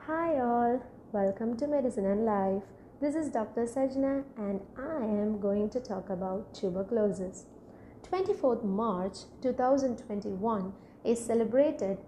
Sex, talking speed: female, 120 wpm